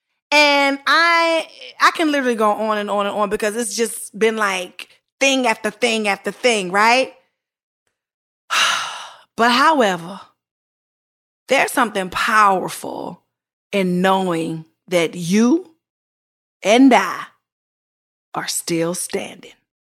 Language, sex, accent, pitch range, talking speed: English, female, American, 200-280 Hz, 110 wpm